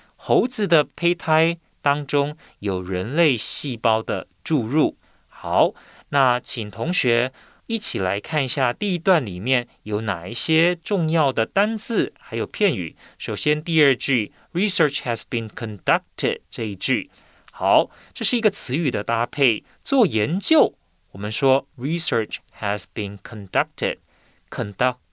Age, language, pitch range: 30-49, Chinese, 115-160 Hz